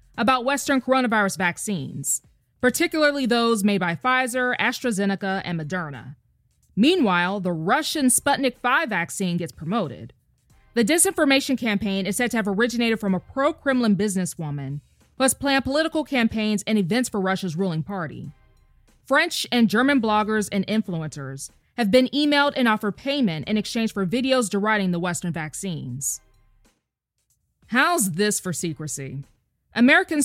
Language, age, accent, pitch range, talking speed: English, 20-39, American, 180-260 Hz, 135 wpm